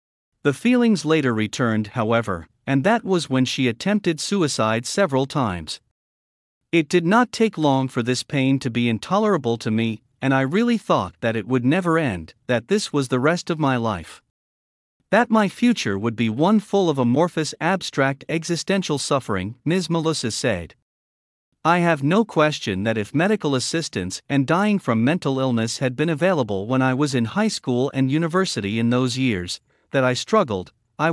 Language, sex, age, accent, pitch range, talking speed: English, male, 50-69, American, 115-170 Hz, 175 wpm